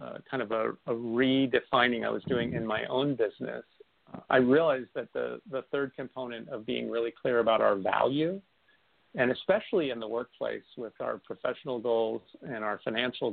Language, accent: English, American